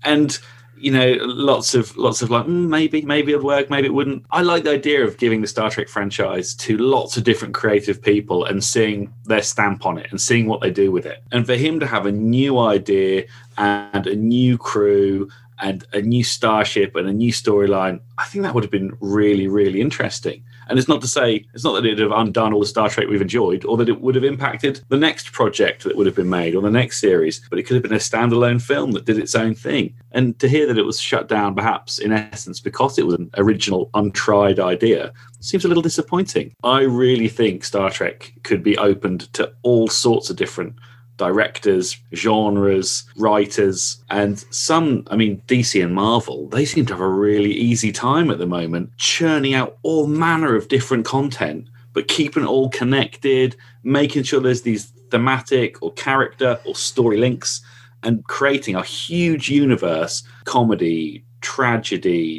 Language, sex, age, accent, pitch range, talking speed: English, male, 30-49, British, 105-130 Hz, 200 wpm